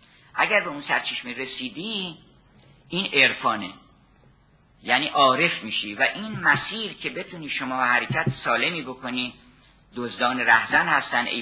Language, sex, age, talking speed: Persian, male, 50-69, 125 wpm